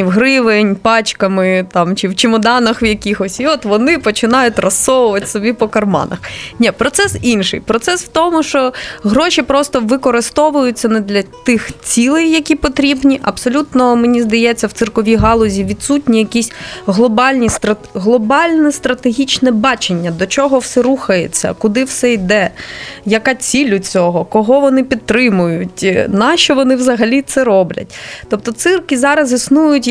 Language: Ukrainian